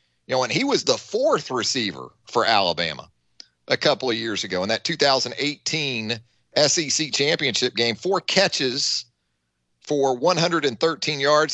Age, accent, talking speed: 40-59, American, 135 wpm